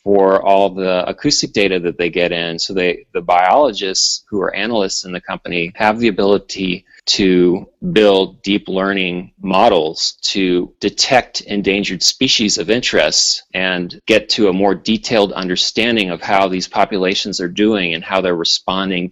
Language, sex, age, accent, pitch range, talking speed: English, male, 30-49, American, 95-110 Hz, 155 wpm